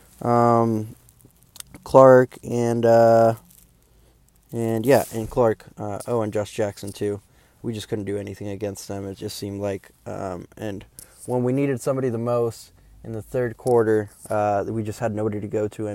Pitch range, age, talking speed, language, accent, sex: 105-120 Hz, 20-39, 175 wpm, English, American, male